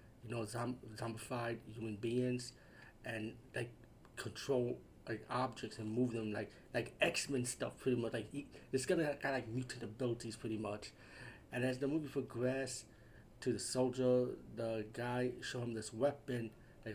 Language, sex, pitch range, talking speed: English, male, 110-130 Hz, 165 wpm